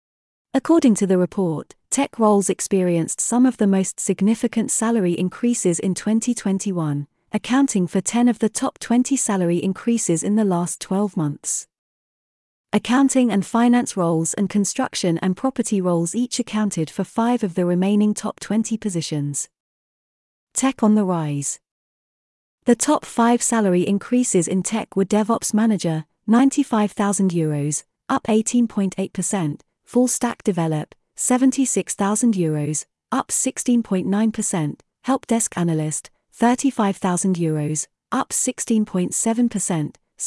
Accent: British